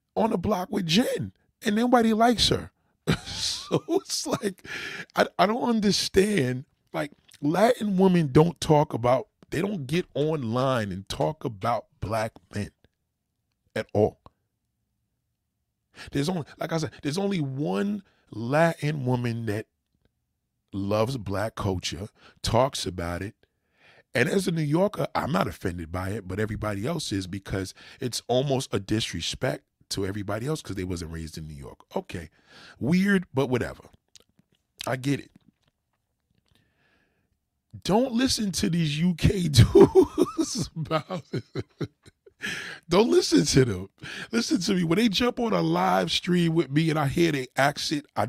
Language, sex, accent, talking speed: English, male, American, 145 wpm